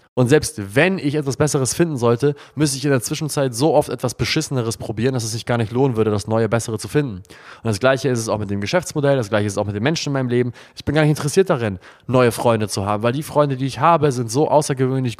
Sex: male